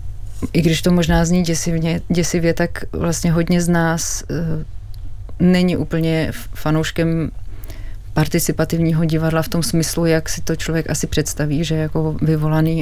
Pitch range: 145-165 Hz